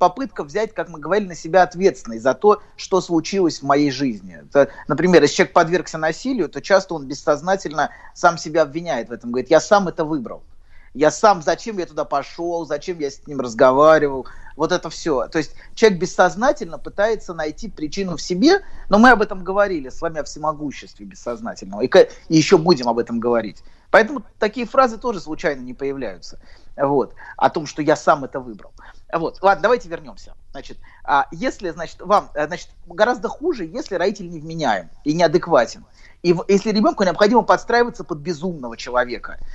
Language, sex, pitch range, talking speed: Russian, male, 150-210 Hz, 170 wpm